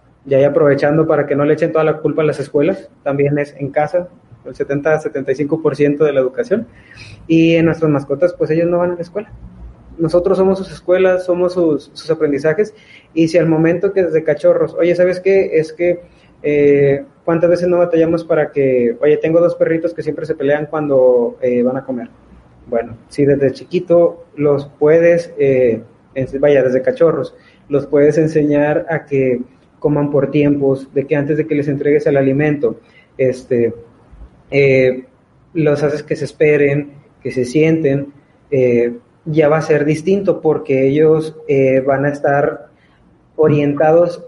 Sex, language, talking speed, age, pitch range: male, Spanish, 170 wpm, 20-39, 135-165 Hz